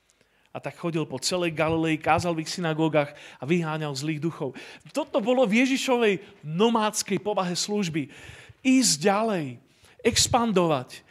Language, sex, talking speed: Slovak, male, 125 wpm